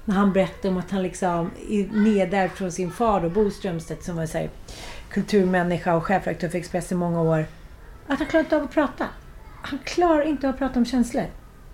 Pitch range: 190-255 Hz